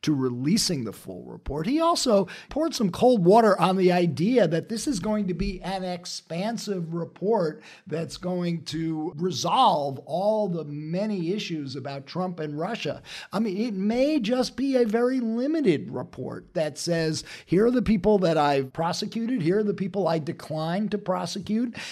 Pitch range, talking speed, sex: 155-205 Hz, 170 wpm, male